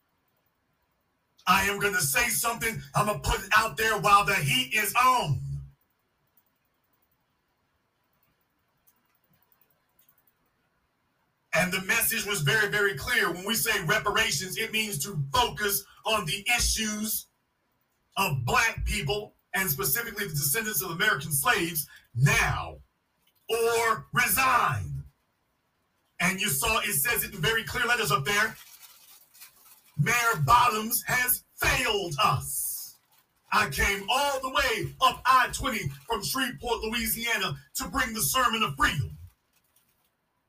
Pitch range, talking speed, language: 160-230 Hz, 120 wpm, English